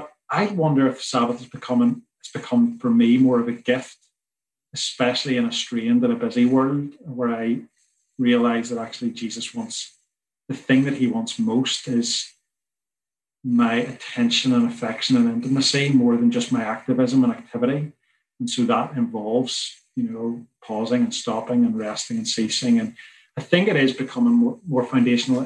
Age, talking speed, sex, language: 30-49, 165 wpm, male, English